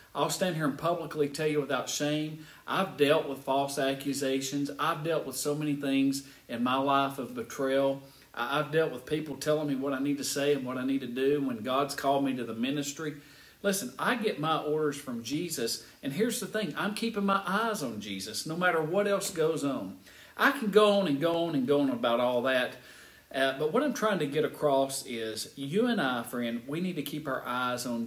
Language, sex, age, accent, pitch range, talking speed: English, male, 40-59, American, 135-170 Hz, 225 wpm